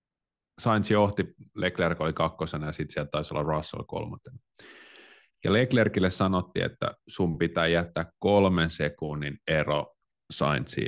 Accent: native